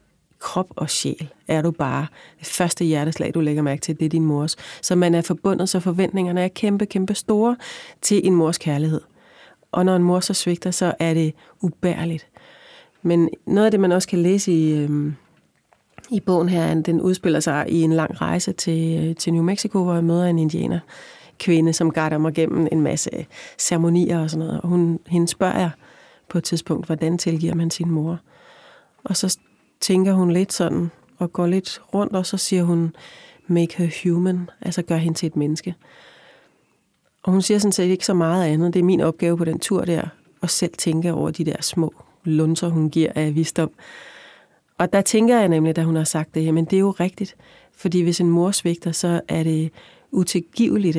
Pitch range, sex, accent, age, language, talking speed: 160-185 Hz, female, native, 30-49, Danish, 195 wpm